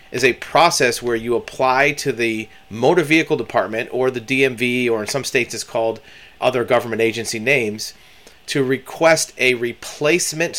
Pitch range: 115-150 Hz